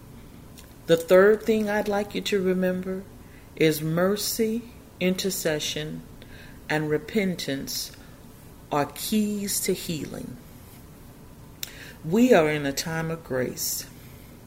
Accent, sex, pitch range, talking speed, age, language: American, female, 150-190 Hz, 100 wpm, 40-59, English